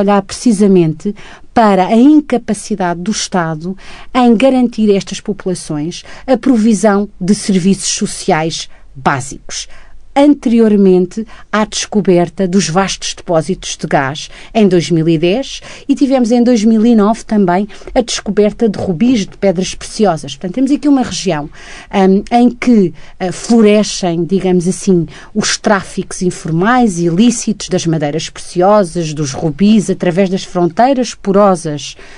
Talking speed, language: 120 wpm, Portuguese